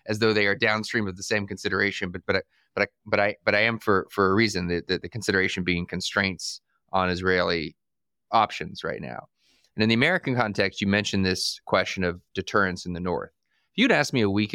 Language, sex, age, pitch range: English, male, 30-49, 90-105 Hz